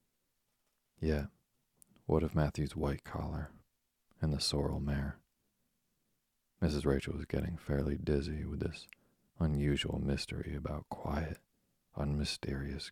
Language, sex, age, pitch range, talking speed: English, male, 40-59, 70-80 Hz, 110 wpm